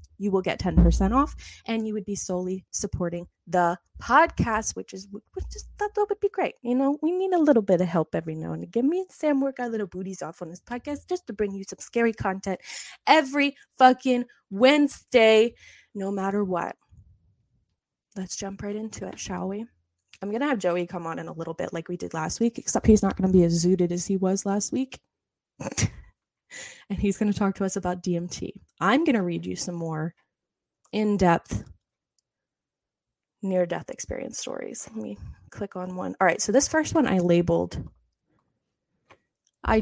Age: 10-29